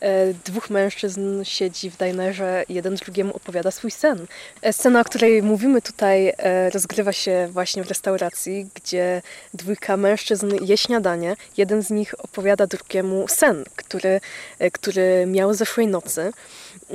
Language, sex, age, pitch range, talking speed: Polish, female, 20-39, 190-225 Hz, 125 wpm